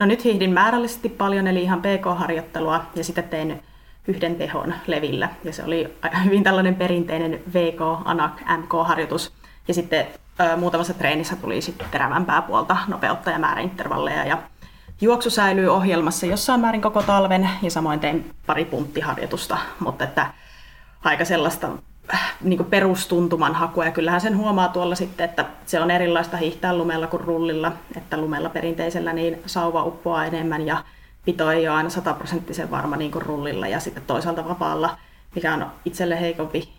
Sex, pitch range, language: female, 165-185 Hz, Finnish